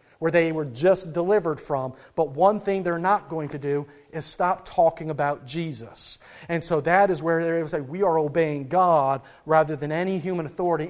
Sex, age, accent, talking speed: male, 40-59, American, 205 wpm